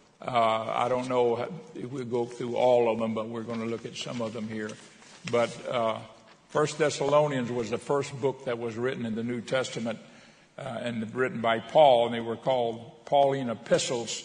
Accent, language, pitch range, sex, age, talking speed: American, English, 120-135 Hz, male, 60-79, 200 wpm